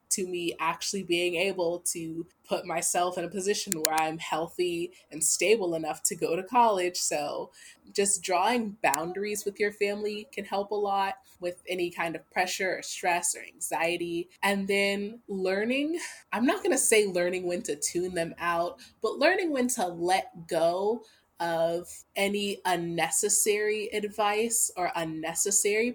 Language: English